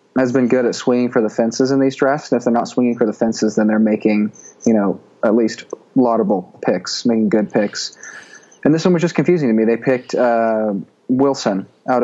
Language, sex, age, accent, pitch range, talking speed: English, male, 20-39, American, 110-130 Hz, 220 wpm